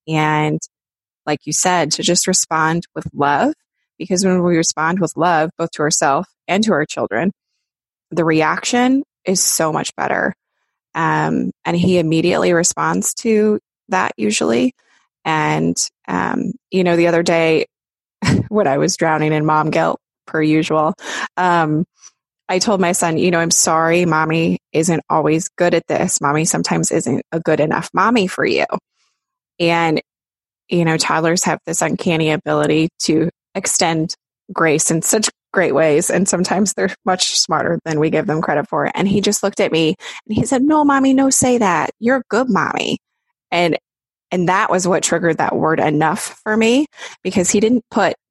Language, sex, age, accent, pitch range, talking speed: English, female, 20-39, American, 155-190 Hz, 170 wpm